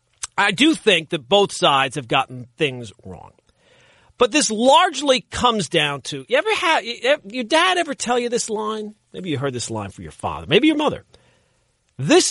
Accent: American